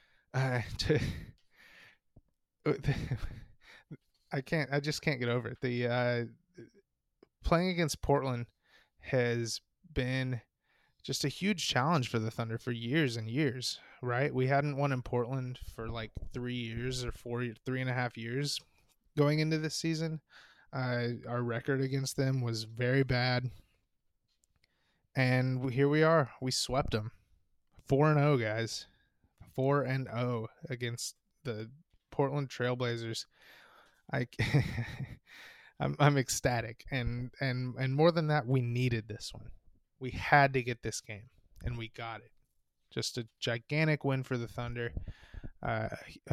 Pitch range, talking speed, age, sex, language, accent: 115-140 Hz, 140 wpm, 20-39, male, English, American